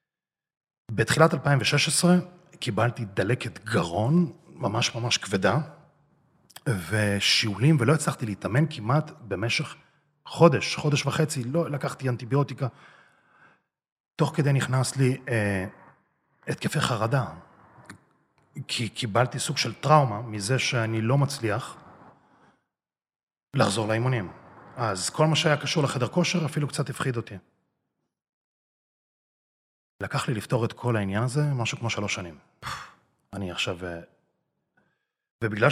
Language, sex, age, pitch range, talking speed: Hebrew, male, 40-59, 105-145 Hz, 105 wpm